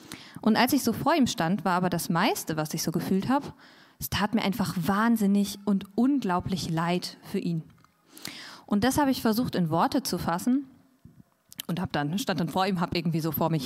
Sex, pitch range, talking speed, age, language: female, 180-230 Hz, 200 wpm, 20-39, German